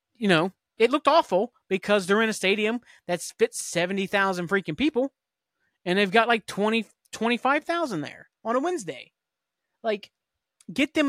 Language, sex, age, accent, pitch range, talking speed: English, male, 30-49, American, 155-205 Hz, 145 wpm